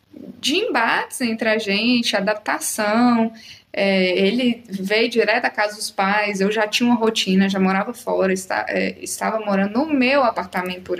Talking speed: 165 wpm